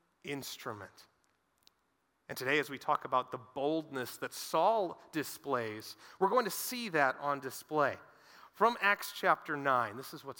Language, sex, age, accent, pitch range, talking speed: English, male, 30-49, American, 150-210 Hz, 150 wpm